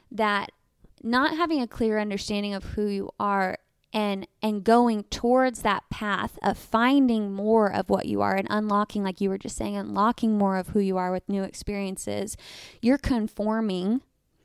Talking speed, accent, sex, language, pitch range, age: 170 wpm, American, female, English, 205-245 Hz, 20-39